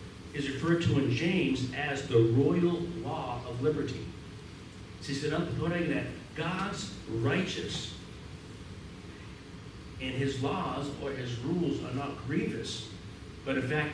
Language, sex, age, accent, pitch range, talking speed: English, male, 50-69, American, 105-140 Hz, 135 wpm